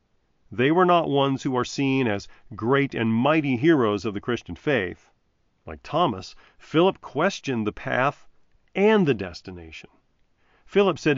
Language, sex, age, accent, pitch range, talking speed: English, male, 40-59, American, 115-175 Hz, 145 wpm